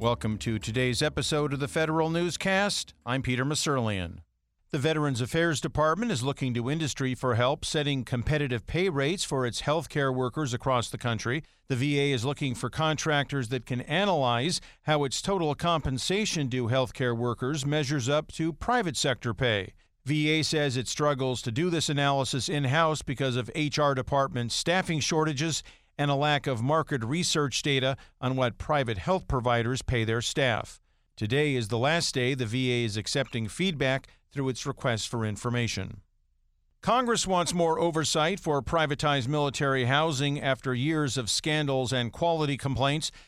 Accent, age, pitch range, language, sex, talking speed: American, 50-69, 125-155 Hz, English, male, 160 wpm